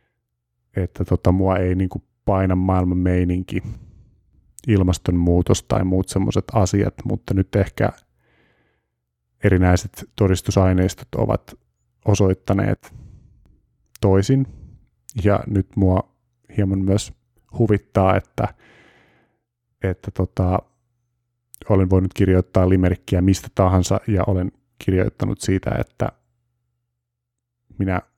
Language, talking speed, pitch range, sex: Finnish, 90 wpm, 90-110 Hz, male